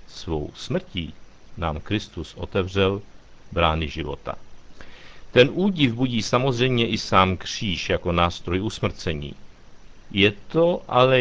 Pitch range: 95-125 Hz